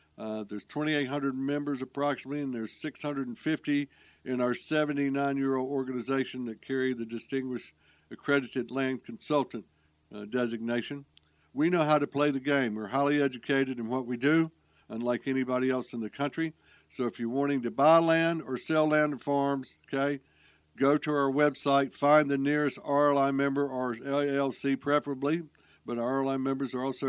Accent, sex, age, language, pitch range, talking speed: American, male, 60-79, English, 125-150 Hz, 160 wpm